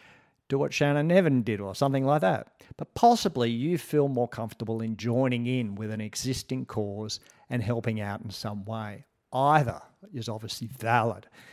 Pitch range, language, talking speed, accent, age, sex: 110-135 Hz, English, 165 wpm, Australian, 50-69, male